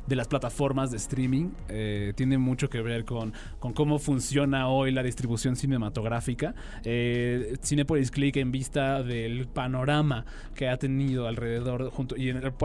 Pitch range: 115-140 Hz